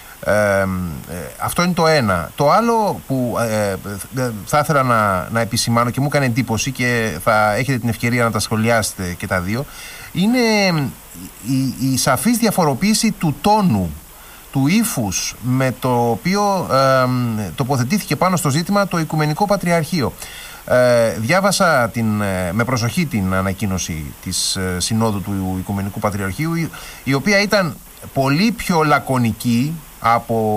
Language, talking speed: Greek, 125 wpm